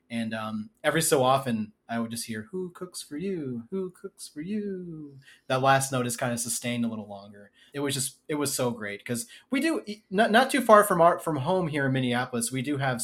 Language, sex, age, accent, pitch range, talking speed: English, male, 30-49, American, 115-140 Hz, 235 wpm